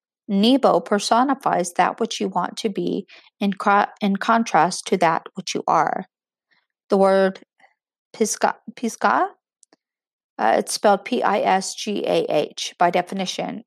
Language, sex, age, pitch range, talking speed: English, female, 50-69, 180-230 Hz, 105 wpm